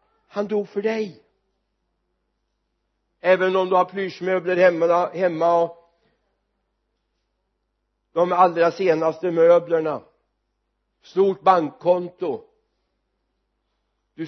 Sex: male